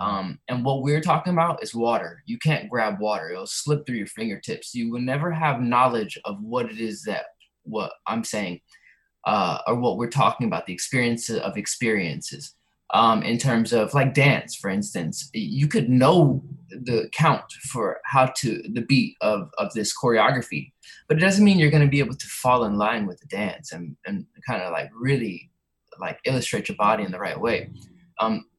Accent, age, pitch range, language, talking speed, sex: American, 20-39, 120-150 Hz, English, 190 wpm, male